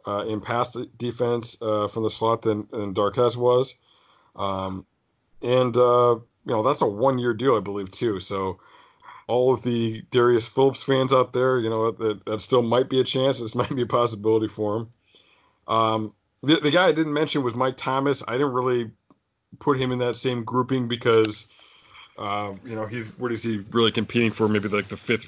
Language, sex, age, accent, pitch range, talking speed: English, male, 40-59, American, 105-125 Hz, 195 wpm